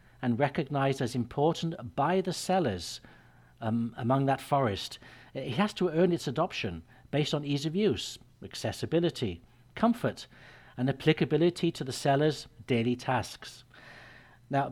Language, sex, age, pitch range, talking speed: English, male, 60-79, 125-160 Hz, 130 wpm